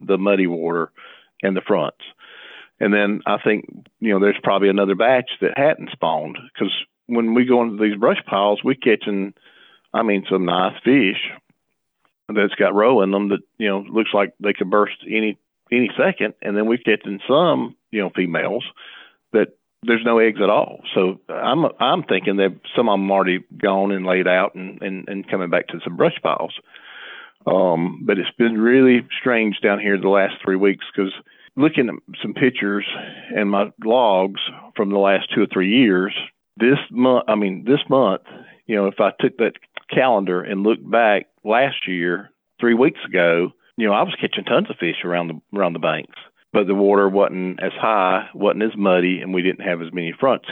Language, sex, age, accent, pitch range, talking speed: English, male, 50-69, American, 95-110 Hz, 190 wpm